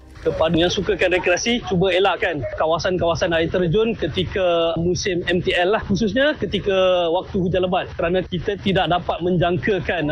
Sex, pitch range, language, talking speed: male, 135-185 Hz, English, 135 wpm